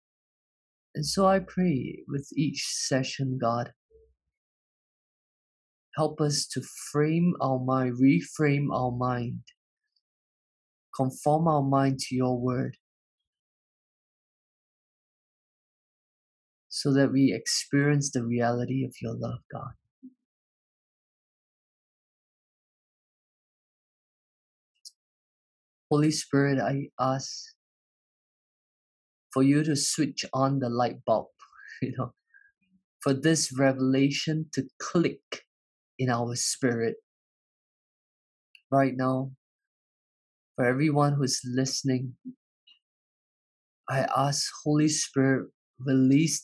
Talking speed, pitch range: 85 wpm, 125-150 Hz